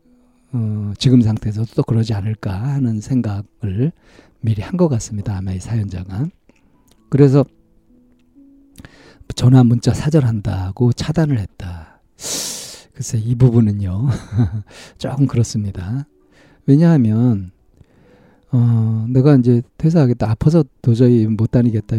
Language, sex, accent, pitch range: Korean, male, native, 110-145 Hz